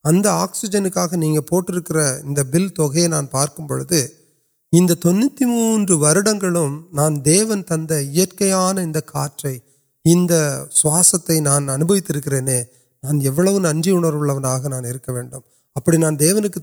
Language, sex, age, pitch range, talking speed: Urdu, male, 30-49, 135-175 Hz, 50 wpm